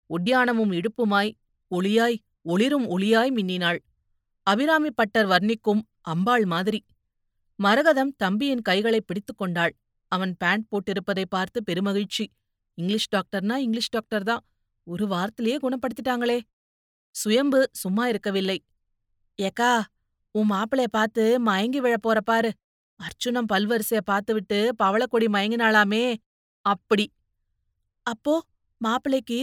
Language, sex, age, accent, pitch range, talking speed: Tamil, female, 30-49, native, 195-250 Hz, 90 wpm